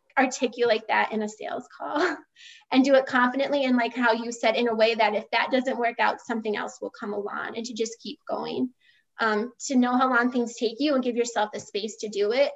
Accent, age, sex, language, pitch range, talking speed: American, 20-39, female, English, 220-265 Hz, 240 wpm